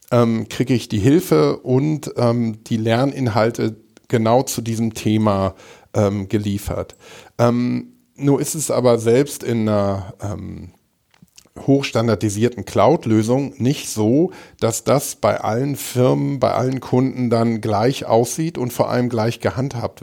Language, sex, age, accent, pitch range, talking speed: English, male, 50-69, German, 110-130 Hz, 130 wpm